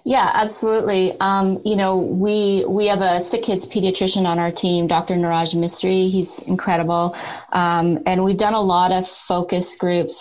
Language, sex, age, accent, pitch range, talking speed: English, female, 30-49, American, 170-190 Hz, 170 wpm